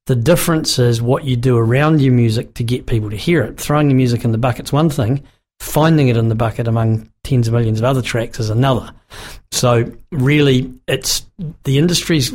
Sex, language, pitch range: male, English, 120-140 Hz